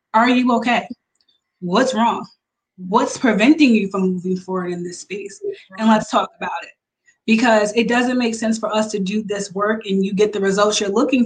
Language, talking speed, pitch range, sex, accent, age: English, 195 wpm, 195-225 Hz, female, American, 20-39